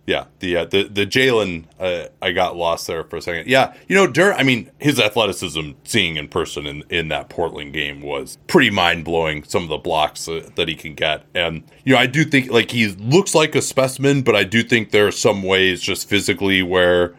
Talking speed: 225 wpm